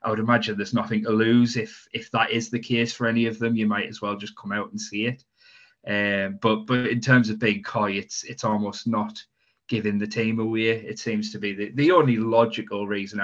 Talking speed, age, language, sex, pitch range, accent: 235 wpm, 20-39, English, male, 100-115 Hz, British